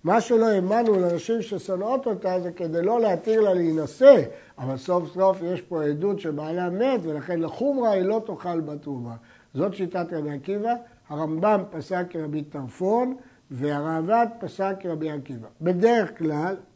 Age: 60-79